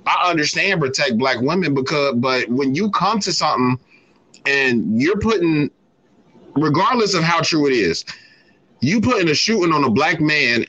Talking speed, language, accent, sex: 165 wpm, English, American, male